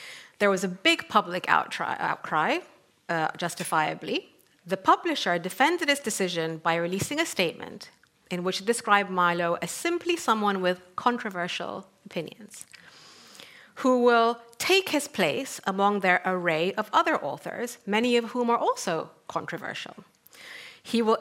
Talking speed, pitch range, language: 135 wpm, 180-245 Hz, English